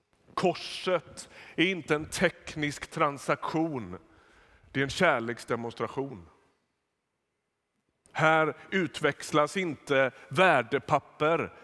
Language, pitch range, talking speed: Swedish, 120-160 Hz, 70 wpm